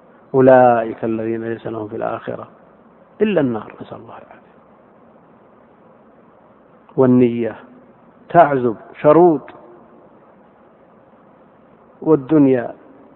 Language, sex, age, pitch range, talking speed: Arabic, male, 50-69, 115-140 Hz, 70 wpm